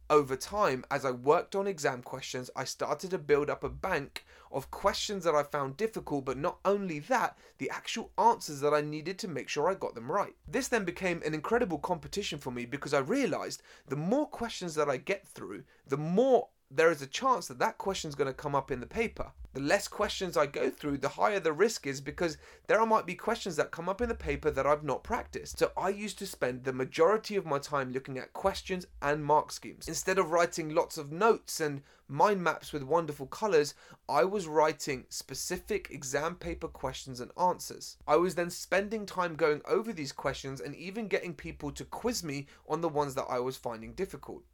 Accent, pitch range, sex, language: British, 140-195 Hz, male, English